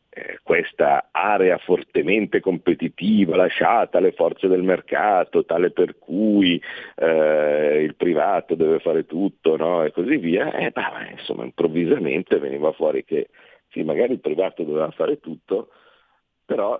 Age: 50-69